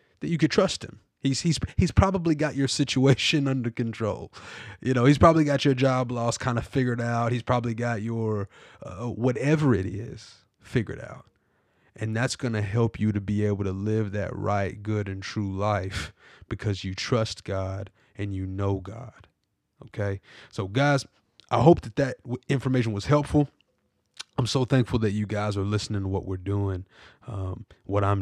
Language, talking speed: English, 185 wpm